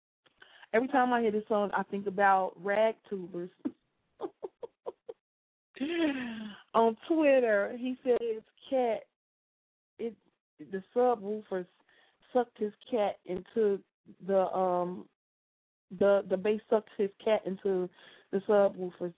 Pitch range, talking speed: 185-225 Hz, 105 wpm